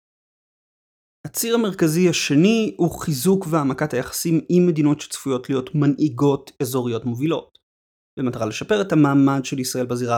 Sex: male